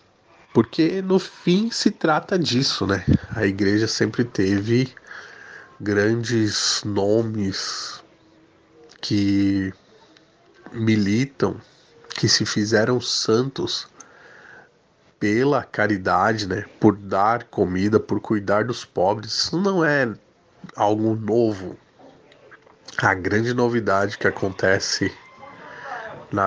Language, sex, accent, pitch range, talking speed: Portuguese, male, Brazilian, 100-120 Hz, 90 wpm